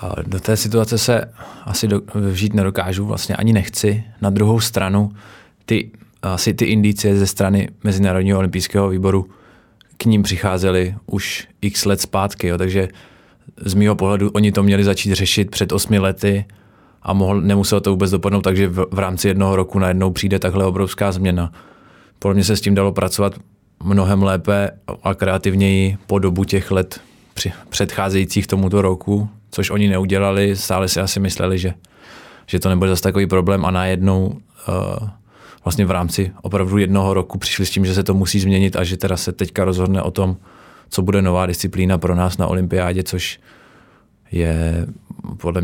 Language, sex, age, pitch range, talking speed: Czech, male, 20-39, 95-100 Hz, 165 wpm